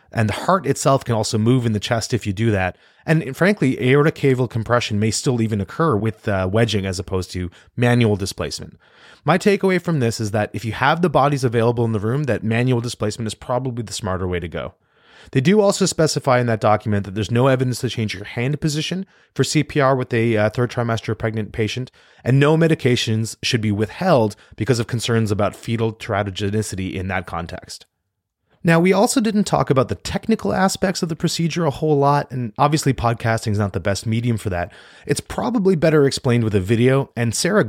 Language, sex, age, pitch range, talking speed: English, male, 30-49, 105-150 Hz, 205 wpm